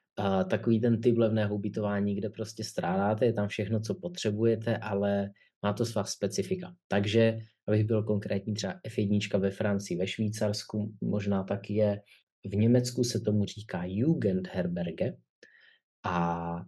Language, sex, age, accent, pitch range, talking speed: Czech, male, 20-39, native, 95-110 Hz, 135 wpm